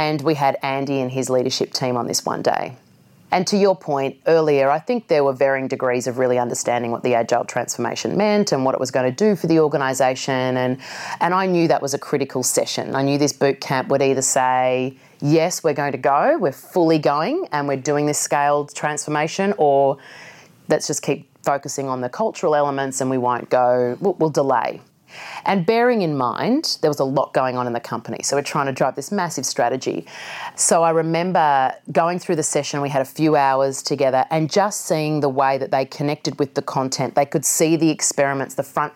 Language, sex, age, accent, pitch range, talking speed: English, female, 30-49, Australian, 135-155 Hz, 215 wpm